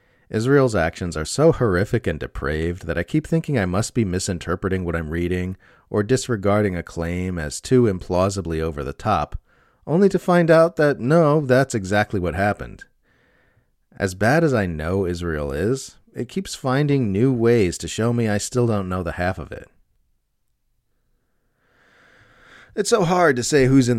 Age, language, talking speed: 30-49, English, 170 wpm